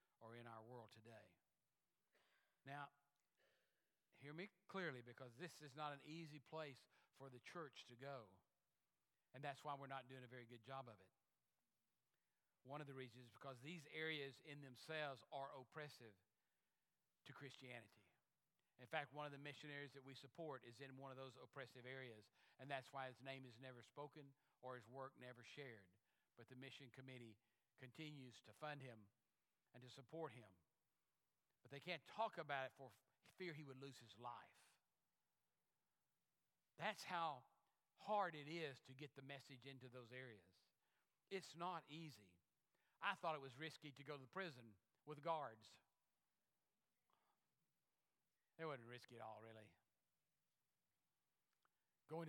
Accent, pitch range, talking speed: American, 125-150 Hz, 155 wpm